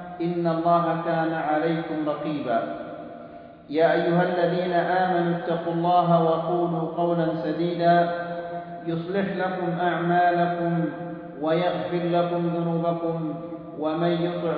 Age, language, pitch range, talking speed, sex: 40-59, Indonesian, 165-175 Hz, 90 wpm, male